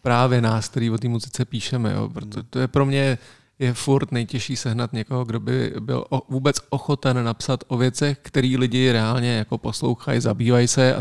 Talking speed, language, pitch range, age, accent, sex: 180 wpm, Czech, 115-130 Hz, 40-59, native, male